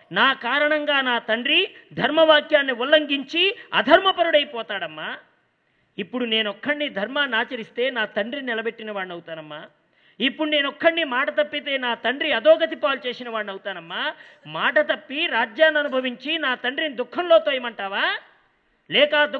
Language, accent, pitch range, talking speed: English, Indian, 235-315 Hz, 100 wpm